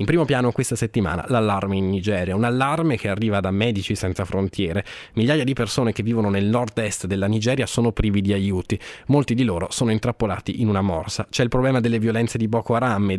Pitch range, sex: 100-125 Hz, male